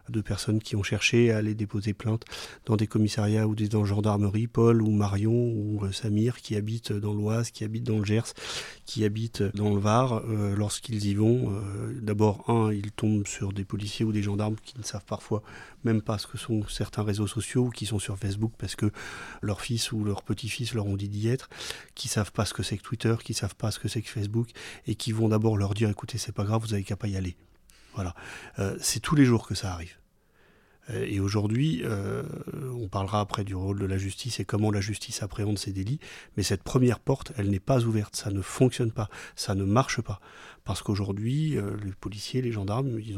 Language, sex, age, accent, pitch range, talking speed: French, male, 30-49, French, 105-115 Hz, 225 wpm